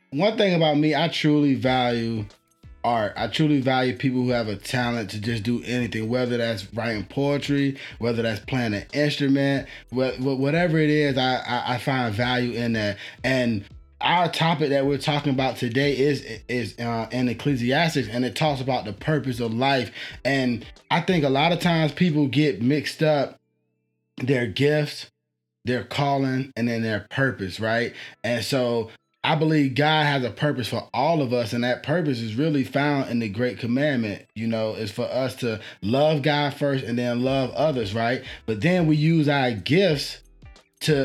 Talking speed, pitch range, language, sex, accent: 175 wpm, 120-150 Hz, English, male, American